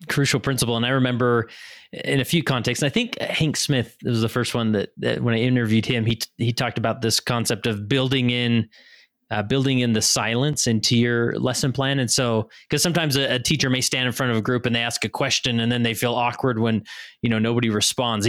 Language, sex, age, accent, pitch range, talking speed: English, male, 20-39, American, 115-135 Hz, 240 wpm